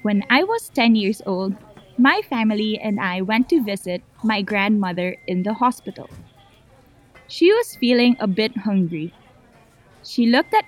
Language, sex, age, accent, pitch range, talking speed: French, female, 20-39, Filipino, 195-250 Hz, 150 wpm